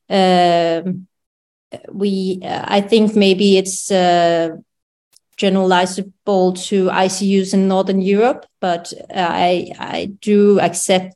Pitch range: 180-205 Hz